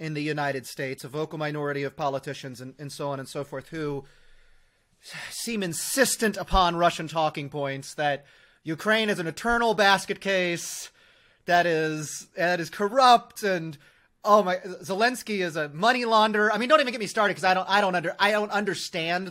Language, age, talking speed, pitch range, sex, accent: English, 30-49, 185 wpm, 155-200 Hz, male, American